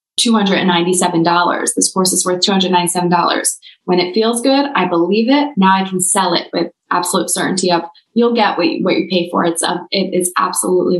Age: 20-39